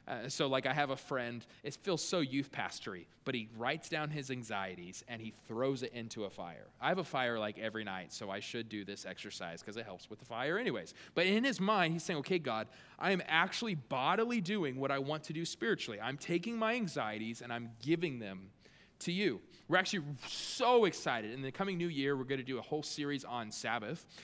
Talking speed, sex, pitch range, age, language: 230 wpm, male, 130-175 Hz, 20-39, English